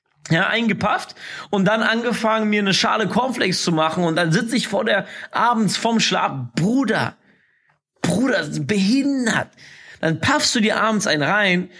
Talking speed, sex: 155 wpm, male